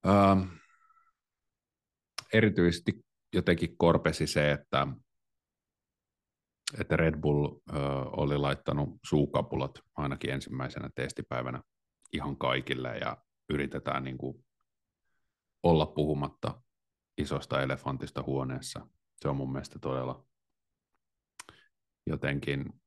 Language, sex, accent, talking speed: Finnish, male, native, 85 wpm